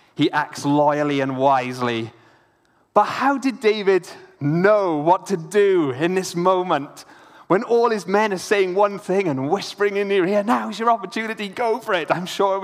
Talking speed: 185 wpm